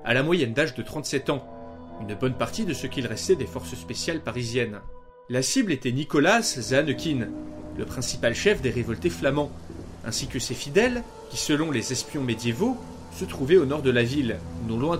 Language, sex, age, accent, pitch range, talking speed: French, male, 30-49, French, 105-145 Hz, 190 wpm